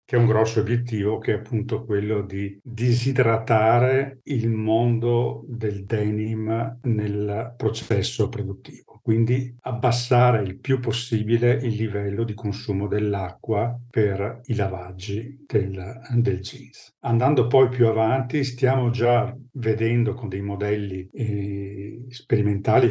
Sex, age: male, 50-69